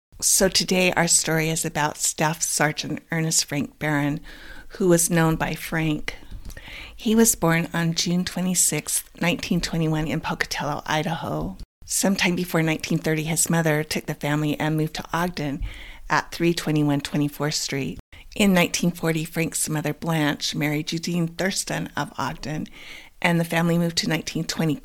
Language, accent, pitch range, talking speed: English, American, 150-170 Hz, 140 wpm